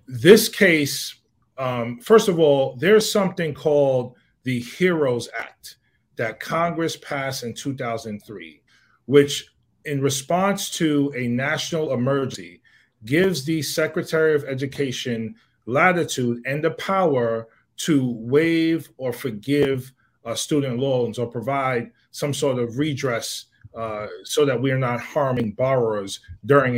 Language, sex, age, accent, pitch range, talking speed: English, male, 40-59, American, 115-145 Hz, 125 wpm